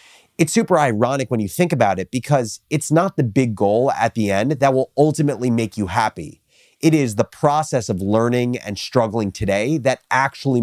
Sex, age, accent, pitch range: male, 30-49, American, 100-130 Hz